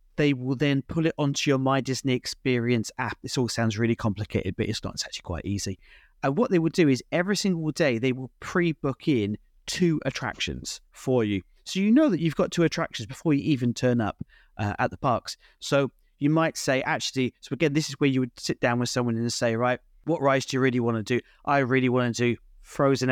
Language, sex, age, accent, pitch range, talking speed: English, male, 30-49, British, 120-140 Hz, 235 wpm